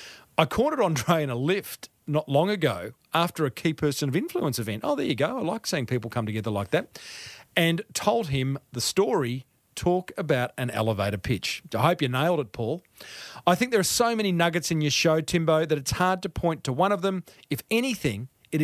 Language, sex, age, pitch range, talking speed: English, male, 40-59, 130-180 Hz, 215 wpm